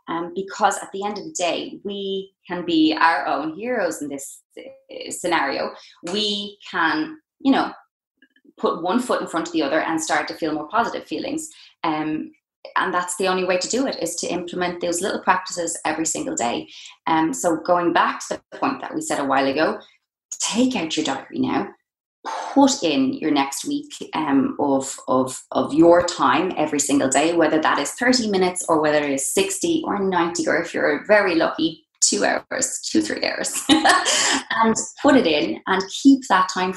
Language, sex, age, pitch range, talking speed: English, female, 20-39, 165-270 Hz, 190 wpm